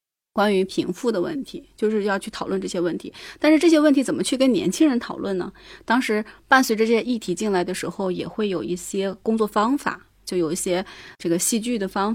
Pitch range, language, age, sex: 180-240 Hz, Chinese, 20-39, female